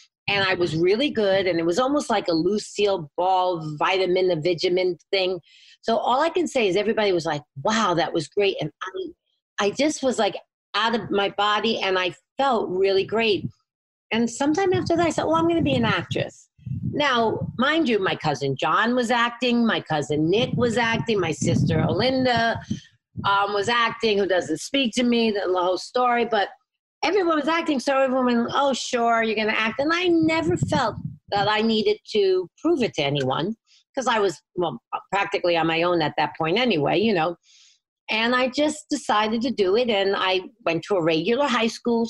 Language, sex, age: English, female, 40-59